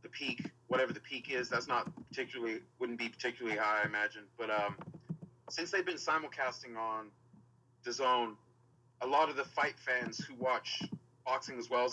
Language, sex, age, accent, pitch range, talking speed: English, male, 30-49, American, 120-145 Hz, 170 wpm